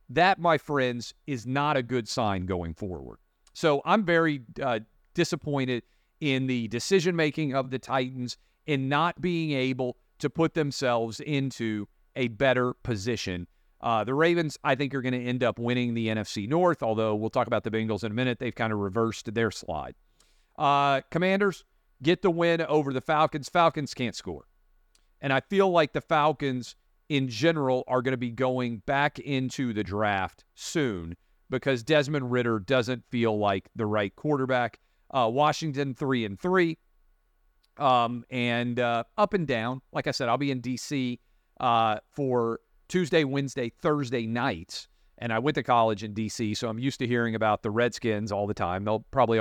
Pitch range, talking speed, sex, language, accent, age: 110-145 Hz, 175 wpm, male, English, American, 40-59